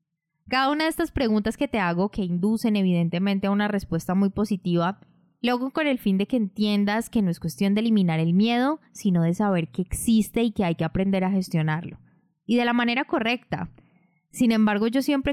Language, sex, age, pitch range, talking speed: Spanish, female, 20-39, 180-230 Hz, 205 wpm